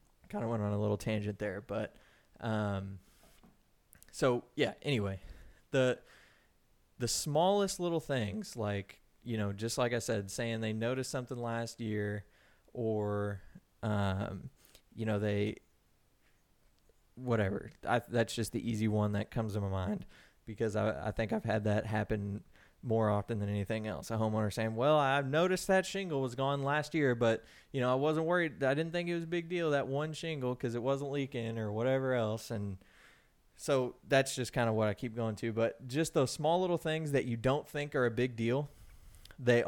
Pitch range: 110-135 Hz